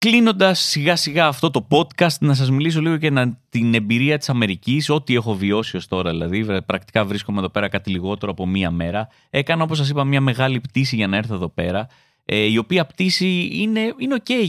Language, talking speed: Greek, 200 wpm